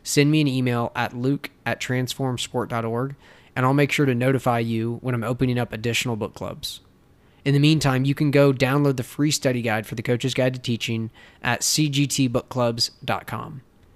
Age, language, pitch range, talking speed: 20-39, English, 120-135 Hz, 175 wpm